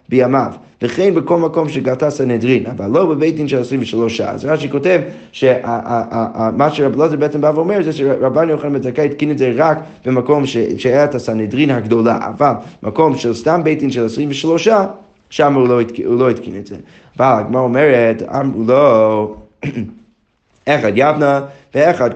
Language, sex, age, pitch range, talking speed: Hebrew, male, 30-49, 115-155 Hz, 165 wpm